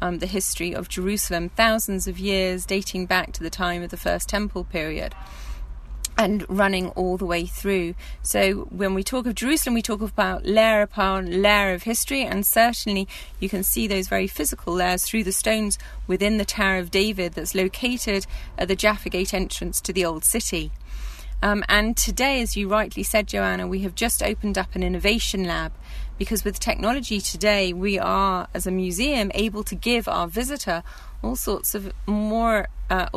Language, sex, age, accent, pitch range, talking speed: English, female, 30-49, British, 180-210 Hz, 185 wpm